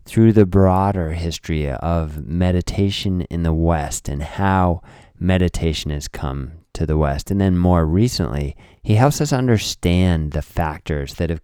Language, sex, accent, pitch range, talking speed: English, male, American, 80-95 Hz, 150 wpm